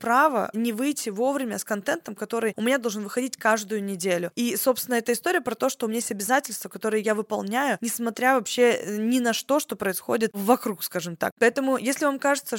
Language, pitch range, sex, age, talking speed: Russian, 220-270 Hz, female, 20-39, 195 wpm